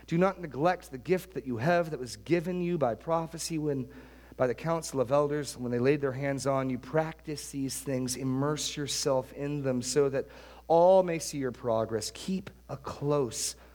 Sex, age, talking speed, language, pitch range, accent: male, 40-59, 190 wpm, English, 110-145 Hz, American